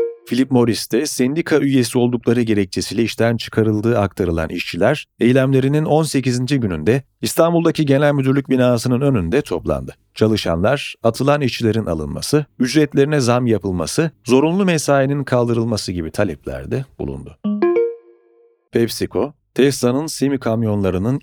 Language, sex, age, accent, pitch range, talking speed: Turkish, male, 40-59, native, 105-135 Hz, 100 wpm